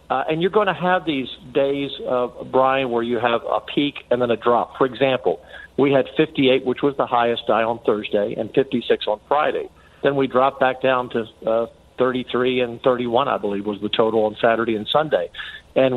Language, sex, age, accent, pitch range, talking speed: English, male, 50-69, American, 120-150 Hz, 205 wpm